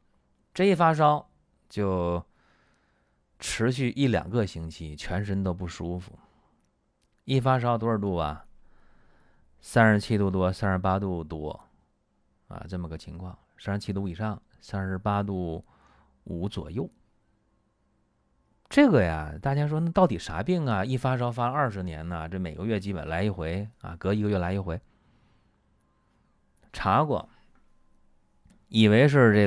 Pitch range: 85-115 Hz